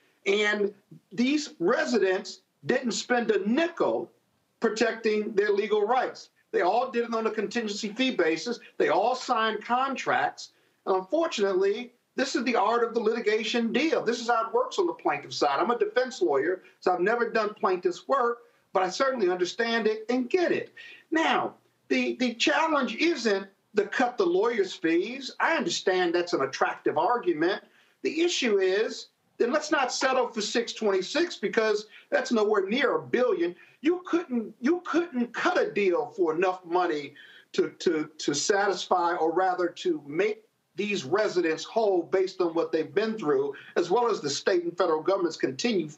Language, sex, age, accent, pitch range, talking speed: English, male, 50-69, American, 210-350 Hz, 165 wpm